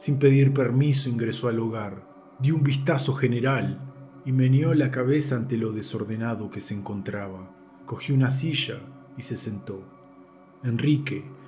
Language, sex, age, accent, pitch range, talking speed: Spanish, male, 40-59, Argentinian, 110-140 Hz, 140 wpm